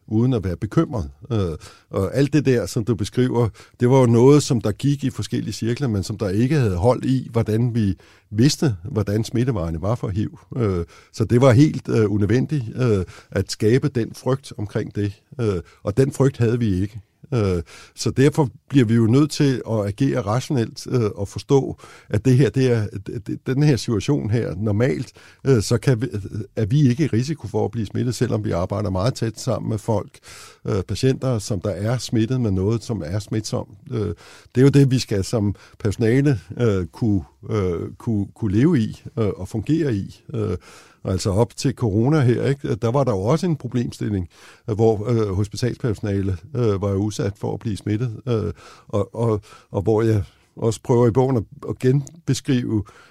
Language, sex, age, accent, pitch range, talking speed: Danish, male, 60-79, native, 105-130 Hz, 175 wpm